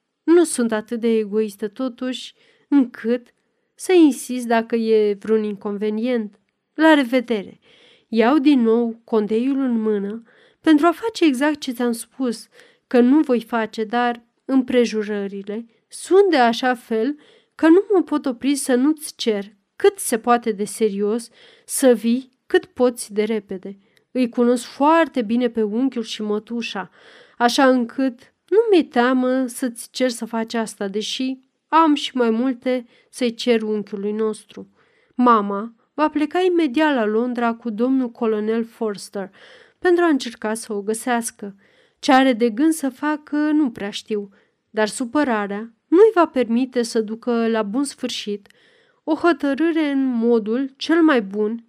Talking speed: 145 wpm